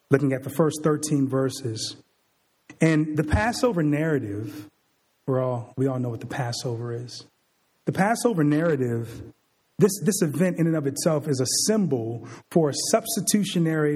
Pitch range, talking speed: 135-170 Hz, 145 wpm